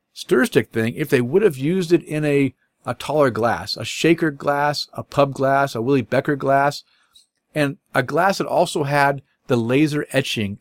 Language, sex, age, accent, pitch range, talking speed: English, male, 40-59, American, 110-150 Hz, 185 wpm